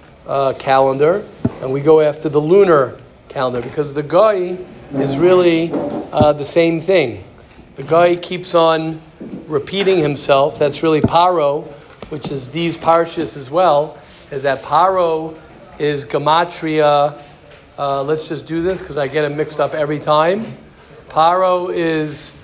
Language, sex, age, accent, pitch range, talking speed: English, male, 50-69, American, 145-180 Hz, 140 wpm